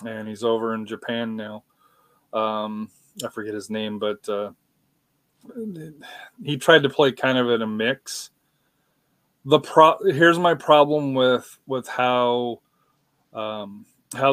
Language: English